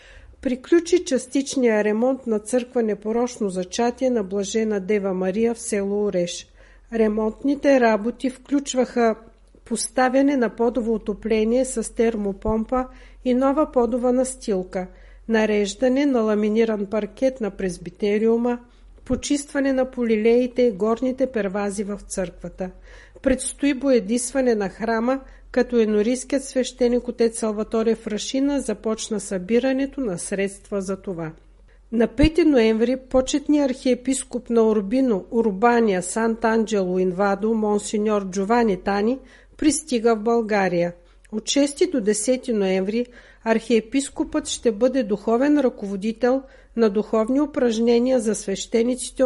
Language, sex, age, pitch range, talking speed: Bulgarian, female, 50-69, 210-255 Hz, 110 wpm